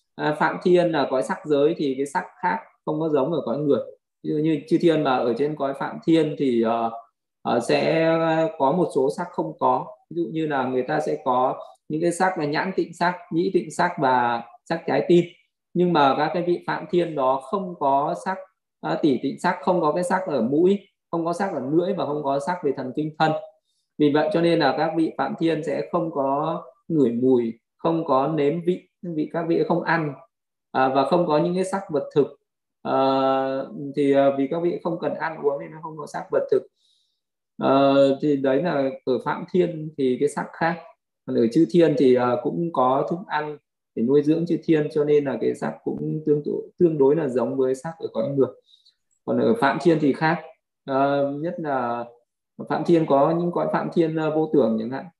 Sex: male